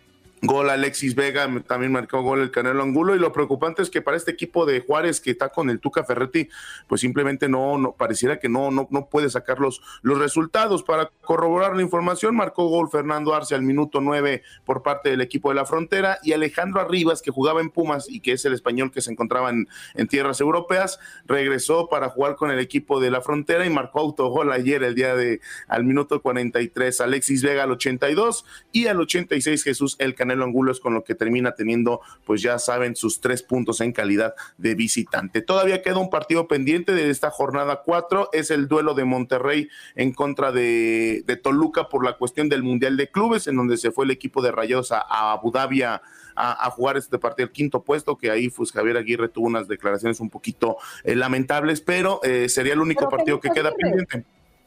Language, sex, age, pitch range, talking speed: Spanish, male, 40-59, 125-160 Hz, 205 wpm